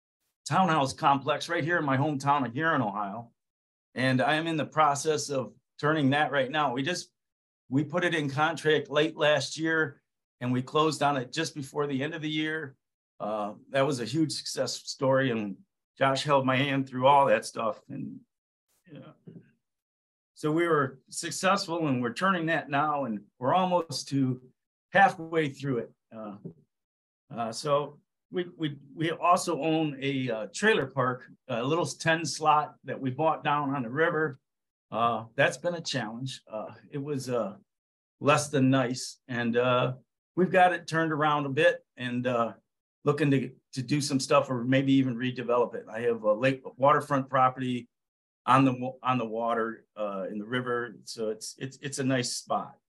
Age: 50-69